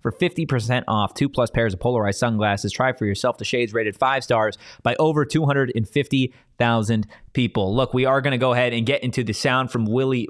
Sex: male